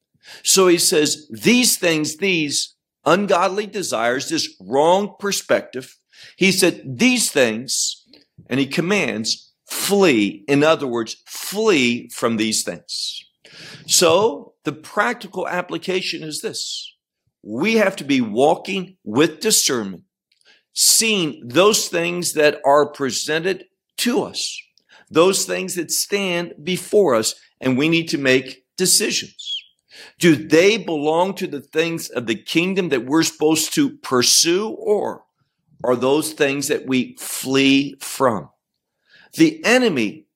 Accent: American